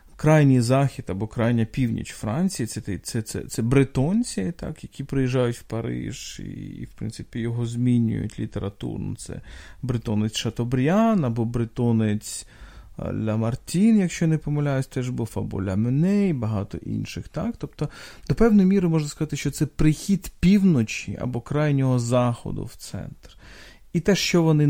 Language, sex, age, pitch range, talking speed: Ukrainian, male, 40-59, 115-155 Hz, 155 wpm